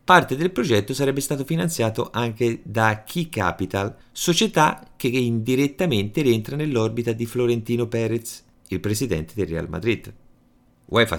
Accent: native